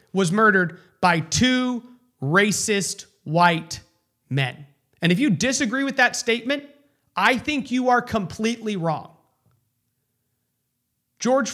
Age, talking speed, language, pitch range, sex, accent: 30-49, 110 wpm, English, 180-265 Hz, male, American